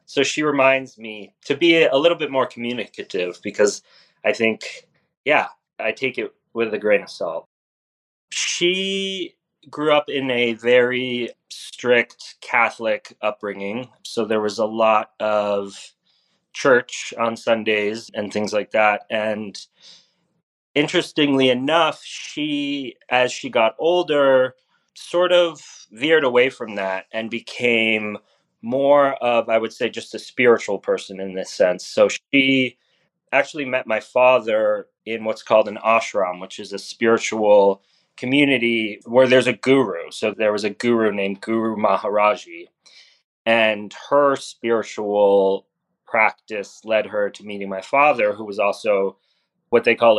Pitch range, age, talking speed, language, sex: 105-145 Hz, 30-49, 140 wpm, English, male